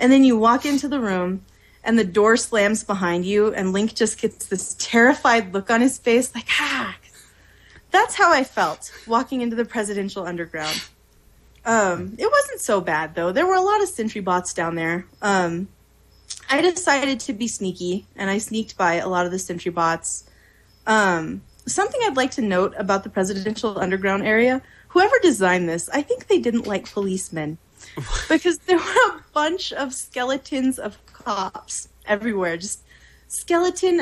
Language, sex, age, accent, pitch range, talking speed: English, female, 20-39, American, 185-245 Hz, 170 wpm